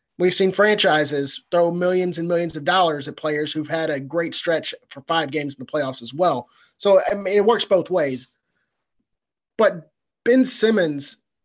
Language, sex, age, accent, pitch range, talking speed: English, male, 30-49, American, 155-185 Hz, 180 wpm